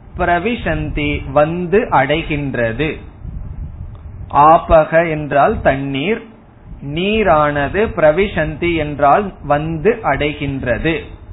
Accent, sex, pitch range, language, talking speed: native, male, 145-185 Hz, Tamil, 60 wpm